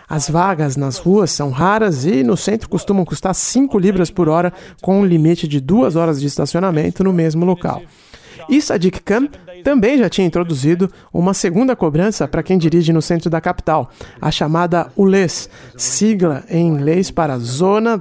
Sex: male